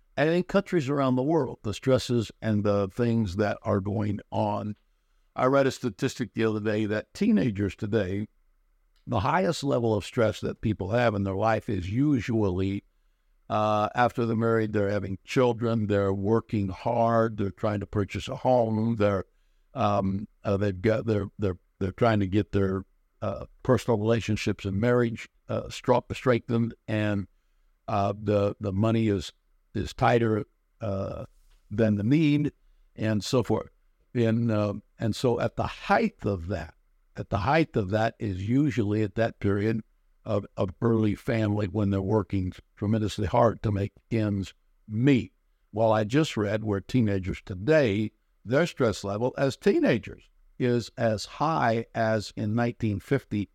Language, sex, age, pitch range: English, male, 60-79, 100-120 Hz